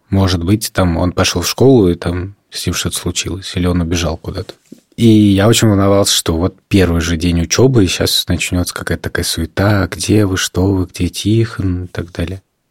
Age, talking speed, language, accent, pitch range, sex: 20-39, 200 wpm, Russian, native, 95-115 Hz, male